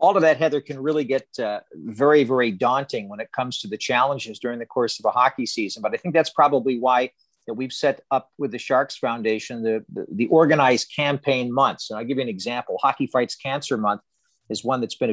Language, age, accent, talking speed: English, 50-69, American, 230 wpm